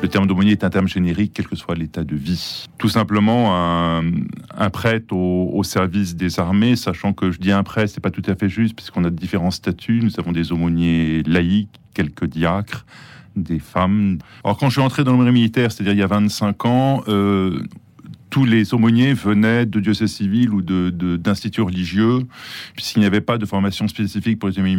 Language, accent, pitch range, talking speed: French, French, 90-110 Hz, 210 wpm